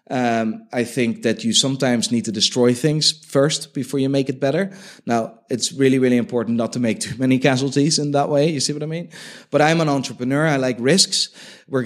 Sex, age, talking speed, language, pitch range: male, 30-49, 220 wpm, English, 110-145 Hz